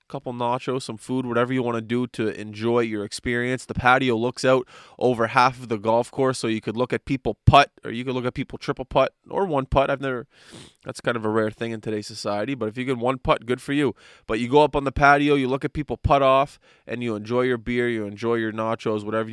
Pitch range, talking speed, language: 110-130 Hz, 265 wpm, English